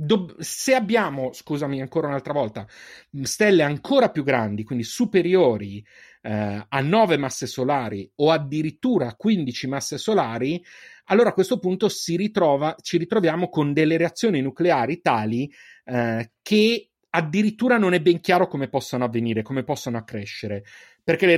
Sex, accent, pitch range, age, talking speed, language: male, native, 115-180 Hz, 30-49, 145 wpm, Italian